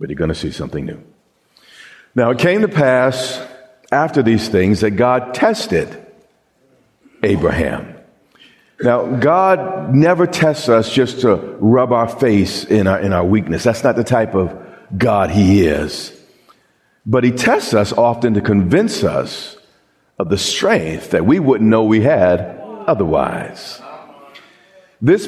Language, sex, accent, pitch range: English, male, American, 115-170 Hz